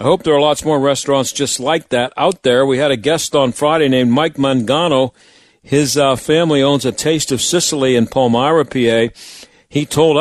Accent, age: American, 50-69